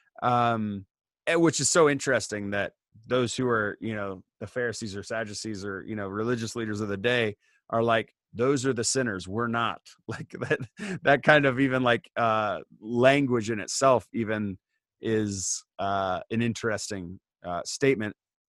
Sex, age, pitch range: male, 30-49, 105-125 Hz